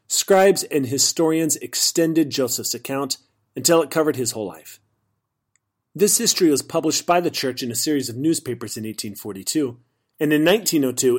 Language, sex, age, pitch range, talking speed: English, male, 40-59, 120-160 Hz, 155 wpm